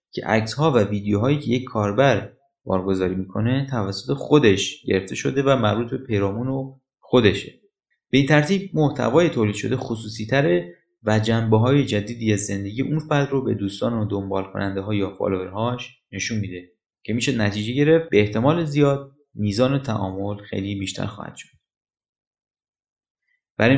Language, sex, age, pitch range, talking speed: Persian, male, 30-49, 105-145 Hz, 155 wpm